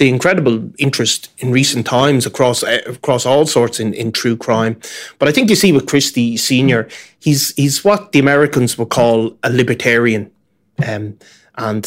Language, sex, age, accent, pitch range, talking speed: English, male, 20-39, Irish, 115-140 Hz, 165 wpm